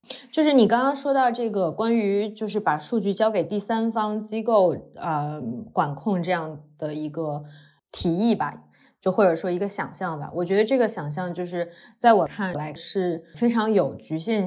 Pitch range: 170-220 Hz